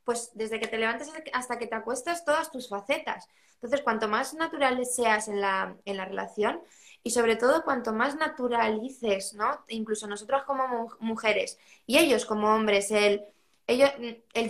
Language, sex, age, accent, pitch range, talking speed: Spanish, female, 20-39, Spanish, 215-275 Hz, 165 wpm